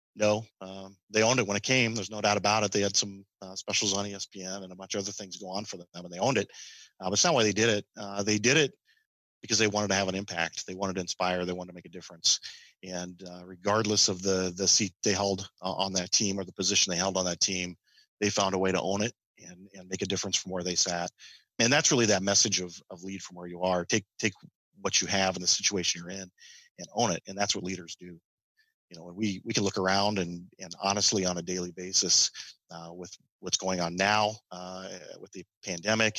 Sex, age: male, 40-59